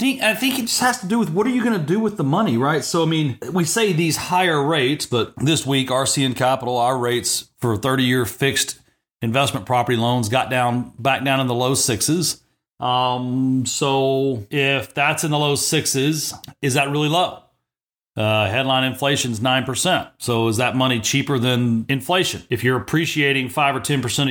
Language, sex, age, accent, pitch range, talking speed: English, male, 40-59, American, 120-150 Hz, 190 wpm